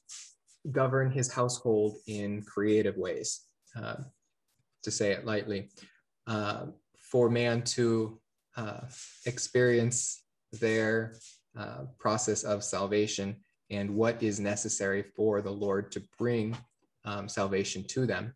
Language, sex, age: English, male, 20-39